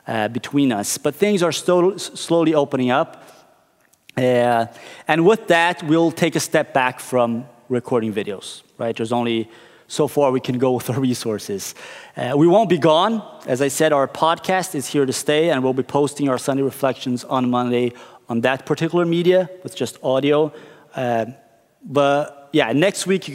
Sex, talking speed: male, 175 wpm